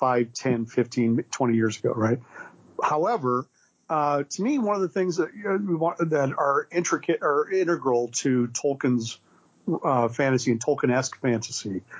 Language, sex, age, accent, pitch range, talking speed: English, male, 50-69, American, 120-145 Hz, 150 wpm